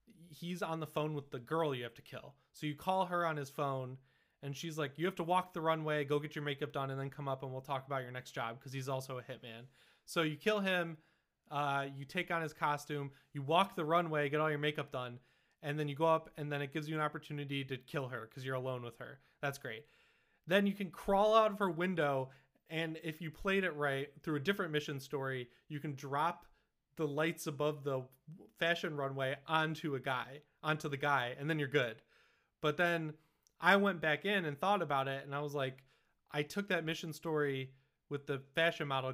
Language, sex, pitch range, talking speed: English, male, 135-165 Hz, 230 wpm